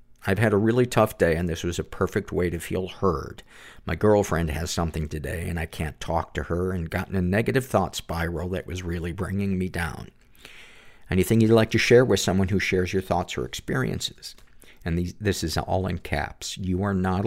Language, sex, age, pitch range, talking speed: English, male, 50-69, 85-100 Hz, 215 wpm